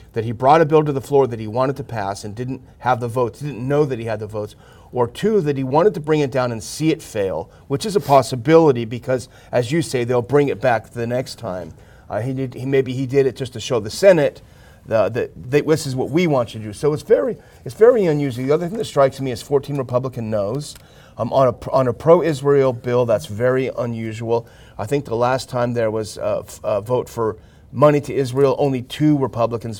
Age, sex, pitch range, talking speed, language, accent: 30-49, male, 115-140 Hz, 245 wpm, English, American